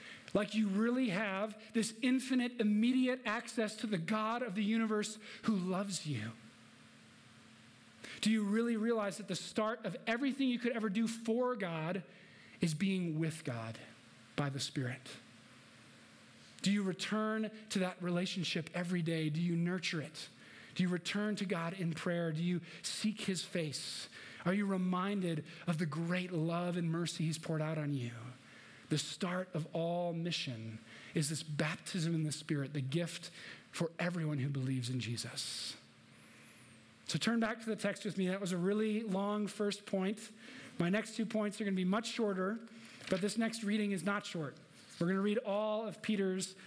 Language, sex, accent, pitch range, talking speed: English, male, American, 165-215 Hz, 175 wpm